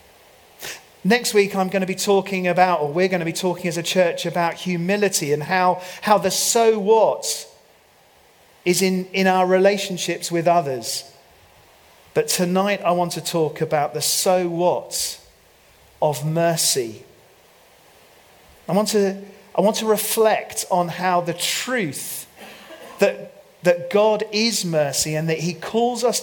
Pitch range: 160-195 Hz